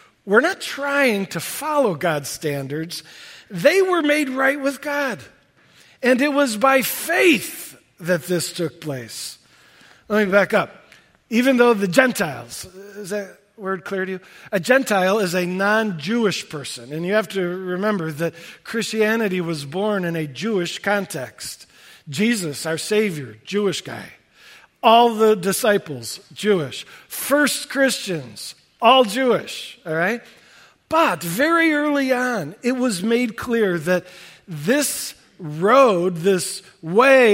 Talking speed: 135 wpm